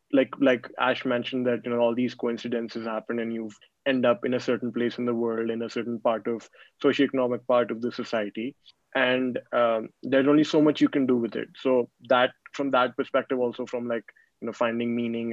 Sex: male